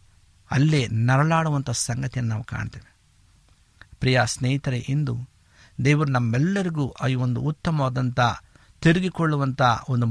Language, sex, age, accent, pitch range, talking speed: Kannada, male, 50-69, native, 110-145 Hz, 90 wpm